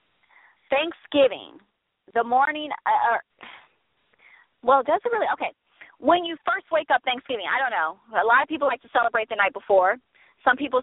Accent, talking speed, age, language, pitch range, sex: American, 170 wpm, 30-49, English, 240-325 Hz, female